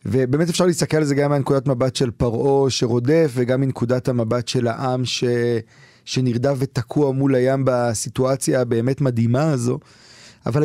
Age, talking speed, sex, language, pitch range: 30-49, 145 wpm, male, Hebrew, 125-150 Hz